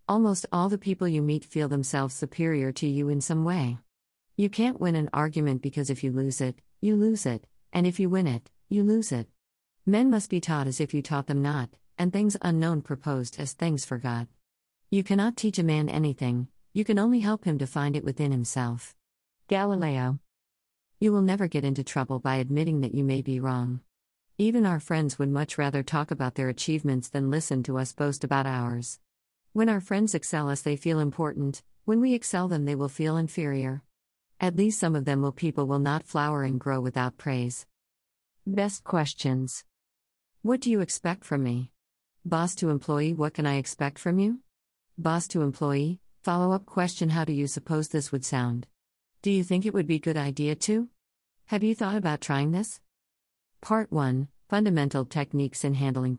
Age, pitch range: 50-69, 130-175 Hz